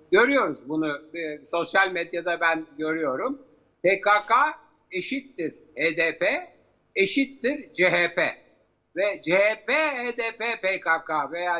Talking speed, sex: 90 wpm, male